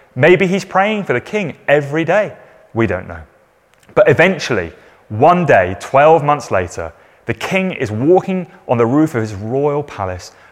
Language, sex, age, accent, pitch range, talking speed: English, male, 30-49, British, 105-155 Hz, 165 wpm